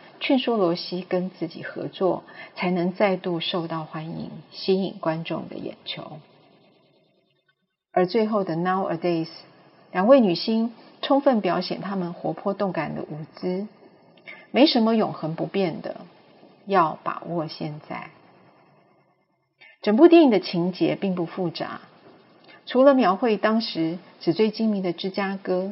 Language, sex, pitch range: Chinese, female, 170-215 Hz